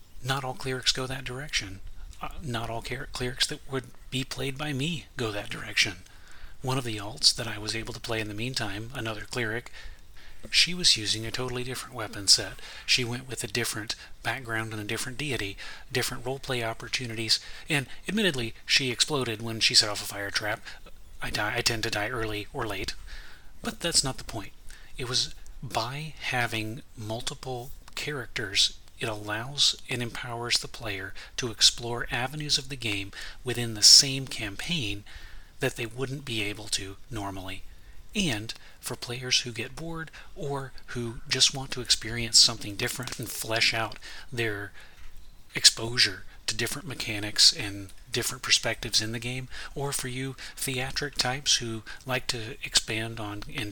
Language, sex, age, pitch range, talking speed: English, male, 30-49, 110-130 Hz, 165 wpm